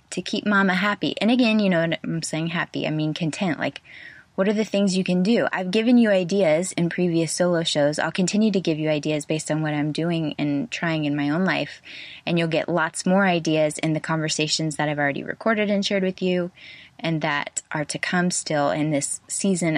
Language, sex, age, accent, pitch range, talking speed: English, female, 20-39, American, 155-200 Hz, 220 wpm